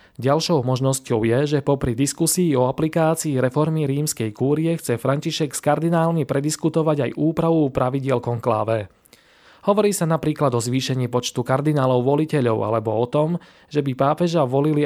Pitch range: 125-155 Hz